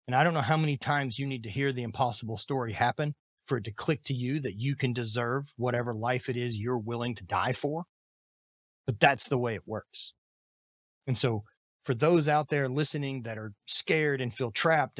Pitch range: 115-145 Hz